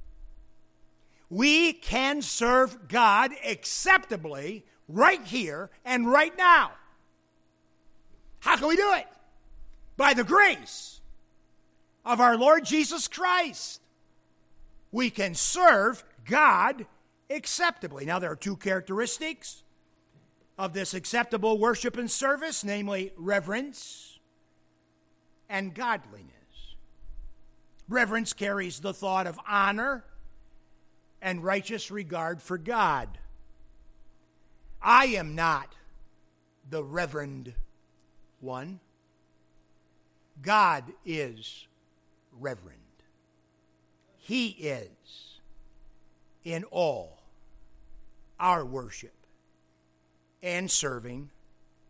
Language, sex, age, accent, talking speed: English, male, 50-69, American, 80 wpm